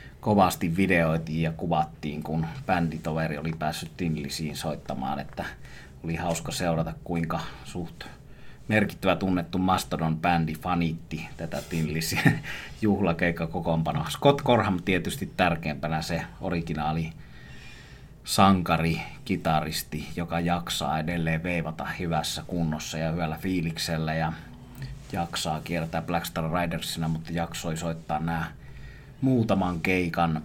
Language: Finnish